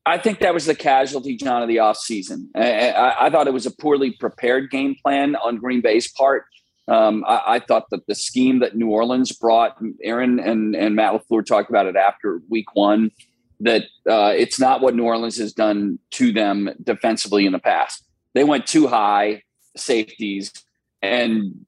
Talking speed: 185 wpm